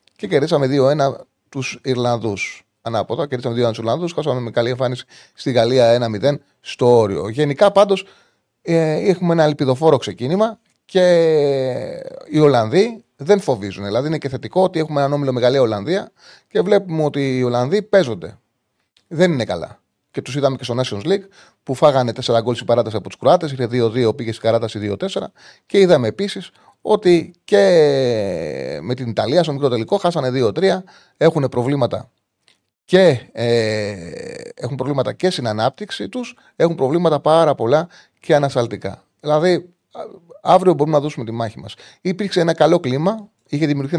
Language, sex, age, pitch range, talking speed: Greek, male, 30-49, 125-185 Hz, 155 wpm